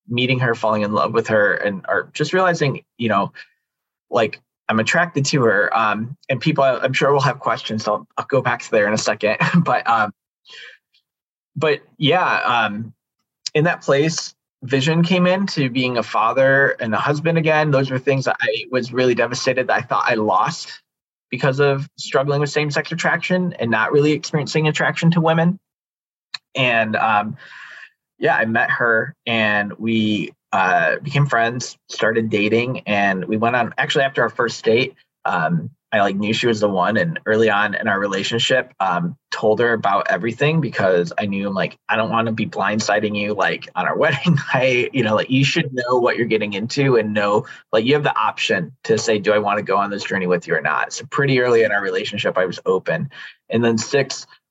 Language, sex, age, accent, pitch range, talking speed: English, male, 20-39, American, 110-145 Hz, 200 wpm